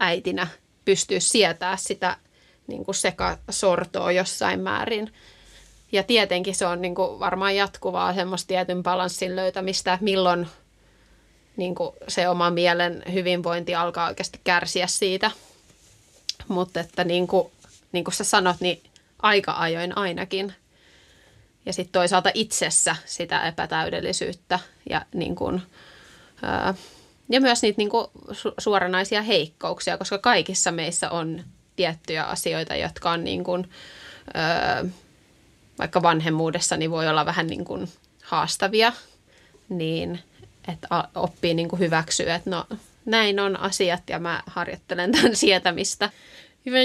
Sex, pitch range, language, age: female, 175-200 Hz, Finnish, 20-39